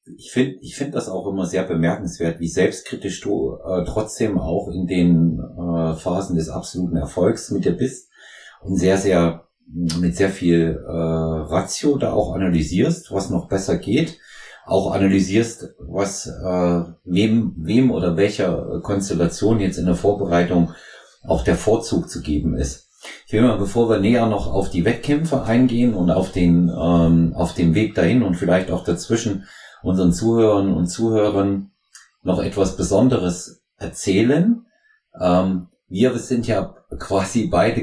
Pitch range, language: 85-105 Hz, German